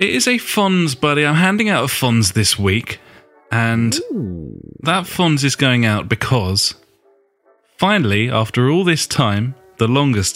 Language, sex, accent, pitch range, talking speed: English, male, British, 100-130 Hz, 150 wpm